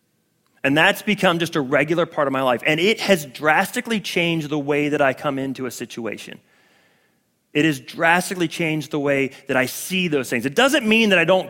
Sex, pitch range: male, 145-195 Hz